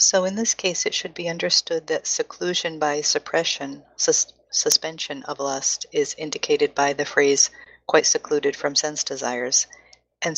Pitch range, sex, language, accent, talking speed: 140-170 Hz, female, English, American, 150 wpm